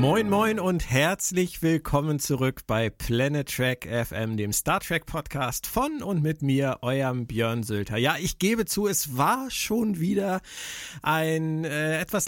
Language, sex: German, male